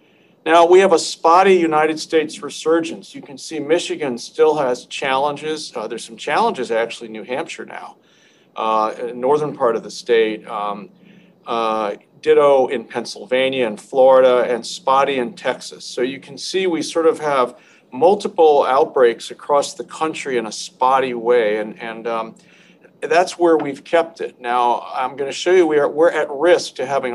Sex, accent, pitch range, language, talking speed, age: male, American, 125-180 Hz, English, 170 wpm, 50-69